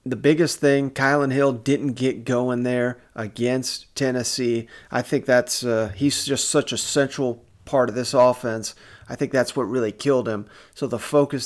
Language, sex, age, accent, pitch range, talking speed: English, male, 30-49, American, 120-140 Hz, 180 wpm